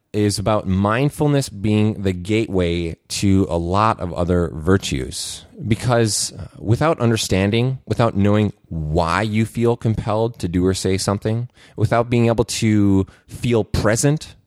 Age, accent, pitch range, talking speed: 30-49, American, 95-125 Hz, 135 wpm